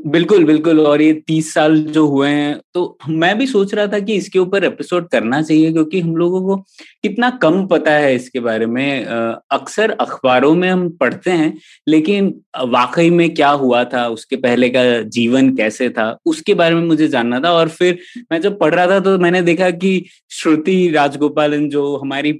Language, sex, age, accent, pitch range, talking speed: Hindi, male, 20-39, native, 135-170 Hz, 190 wpm